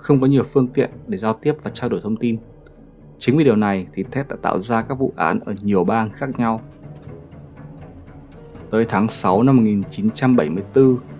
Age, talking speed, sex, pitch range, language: 20-39, 190 wpm, male, 95-130 Hz, Vietnamese